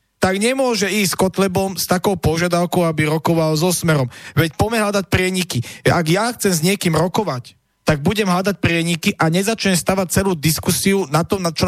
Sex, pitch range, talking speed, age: male, 145-190 Hz, 185 wpm, 40-59